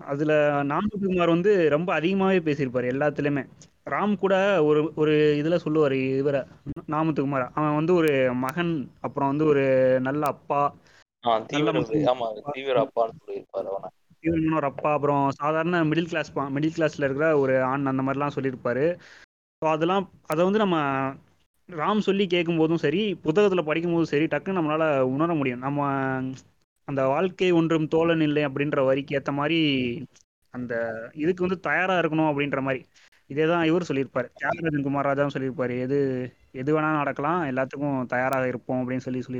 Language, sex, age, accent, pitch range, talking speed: Tamil, male, 20-39, native, 135-170 Hz, 110 wpm